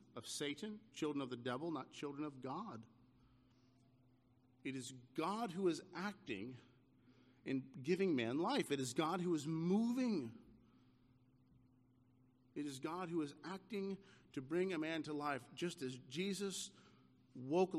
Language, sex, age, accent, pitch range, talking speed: English, male, 50-69, American, 125-185 Hz, 140 wpm